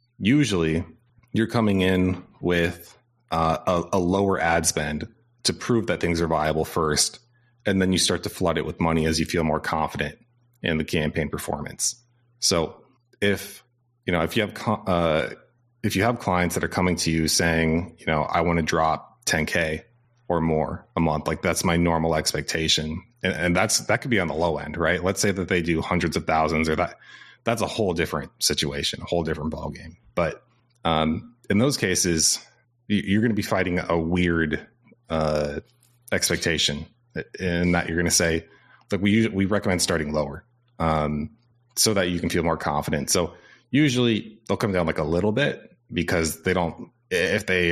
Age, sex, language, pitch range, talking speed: 30-49, male, English, 80-110 Hz, 185 wpm